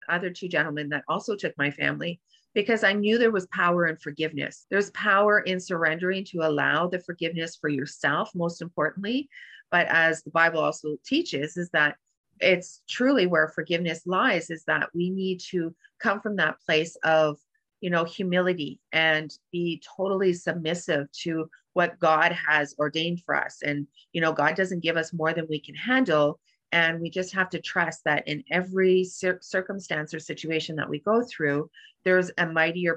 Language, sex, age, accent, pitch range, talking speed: English, female, 40-59, American, 155-180 Hz, 175 wpm